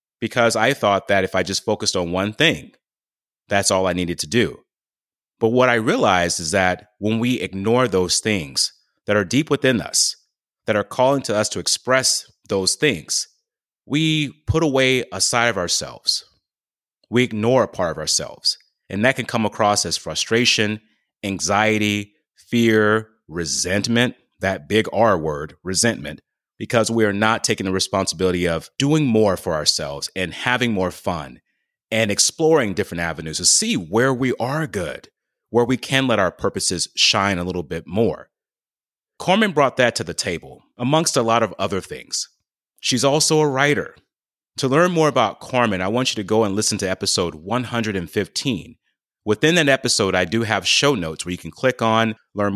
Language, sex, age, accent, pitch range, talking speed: English, male, 30-49, American, 95-125 Hz, 175 wpm